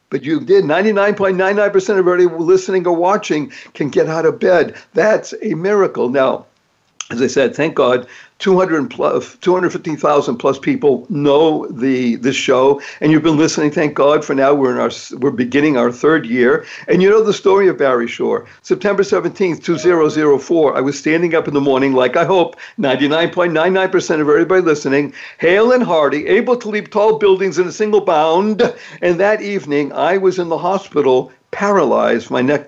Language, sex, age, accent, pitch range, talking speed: English, male, 60-79, American, 145-195 Hz, 180 wpm